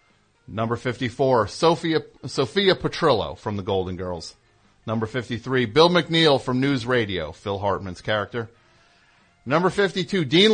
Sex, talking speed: male, 125 wpm